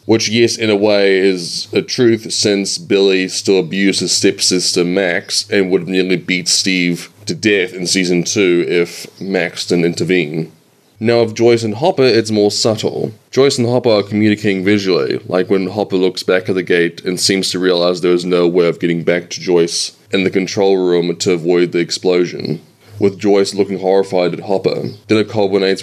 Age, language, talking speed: 20-39, English, 190 wpm